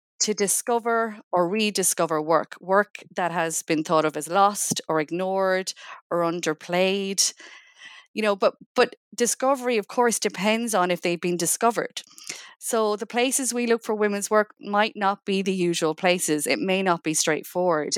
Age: 30-49